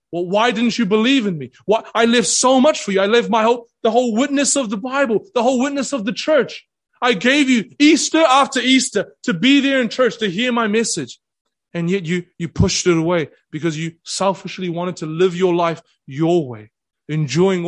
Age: 30-49